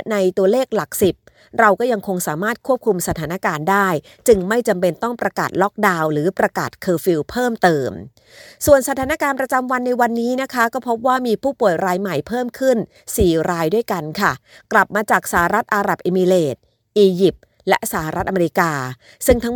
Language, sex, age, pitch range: Thai, female, 30-49, 175-220 Hz